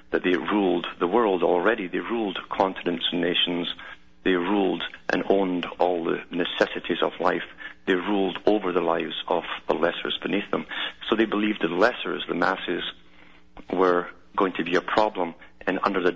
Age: 50-69